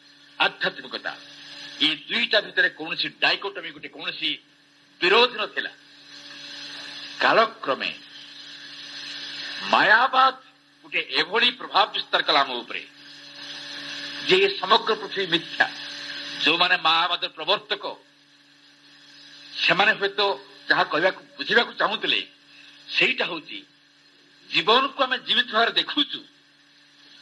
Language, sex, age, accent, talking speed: English, male, 60-79, Indian, 65 wpm